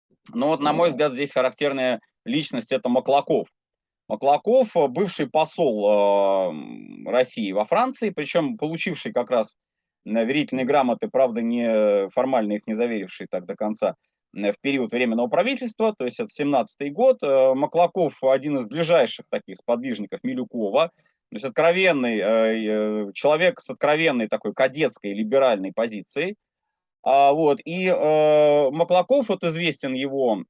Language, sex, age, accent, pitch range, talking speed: Russian, male, 30-49, native, 115-170 Hz, 135 wpm